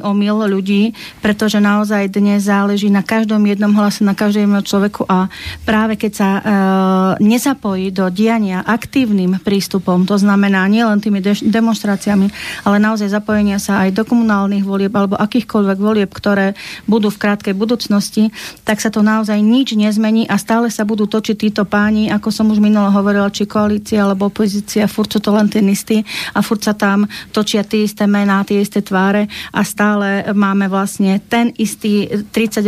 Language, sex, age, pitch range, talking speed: Slovak, female, 40-59, 200-220 Hz, 160 wpm